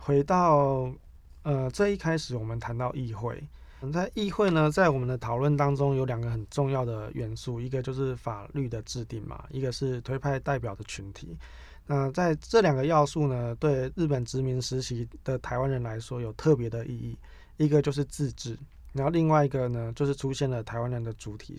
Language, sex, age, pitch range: Chinese, male, 20-39, 115-145 Hz